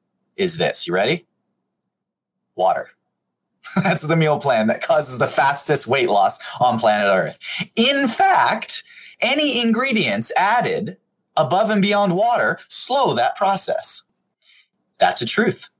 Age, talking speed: 30-49, 125 wpm